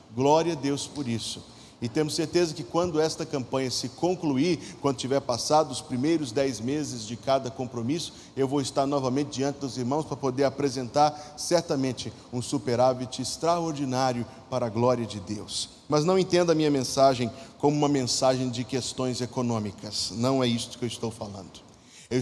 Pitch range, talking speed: 130-165 Hz, 170 wpm